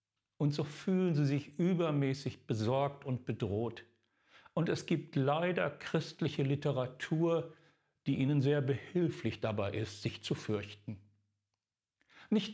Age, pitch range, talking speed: 50-69, 115-160 Hz, 120 wpm